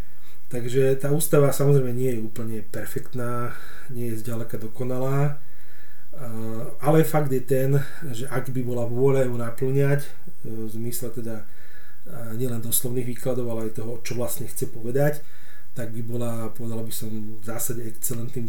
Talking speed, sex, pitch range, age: 145 wpm, male, 120-140 Hz, 40-59